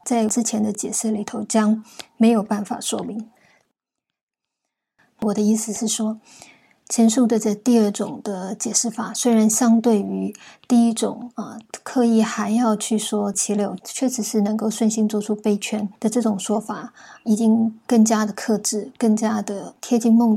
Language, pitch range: Chinese, 210-230 Hz